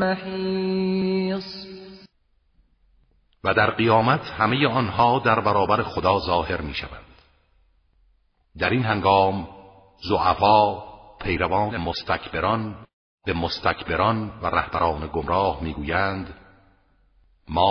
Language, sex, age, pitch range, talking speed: Persian, male, 50-69, 75-110 Hz, 80 wpm